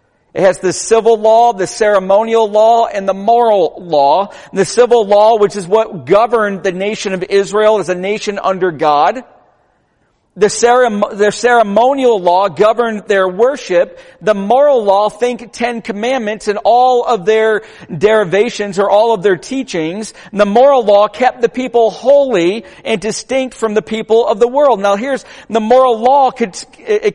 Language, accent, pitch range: English, American, 200-255 Hz